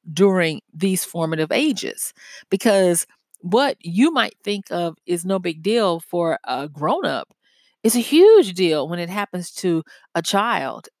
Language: English